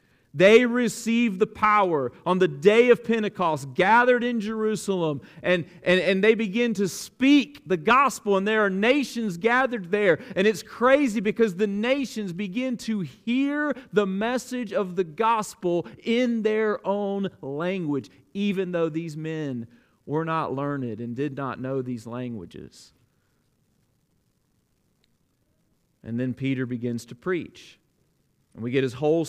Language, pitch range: English, 165-220 Hz